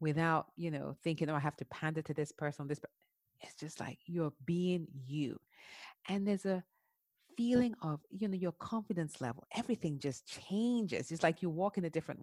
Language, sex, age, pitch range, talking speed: English, female, 40-59, 160-240 Hz, 195 wpm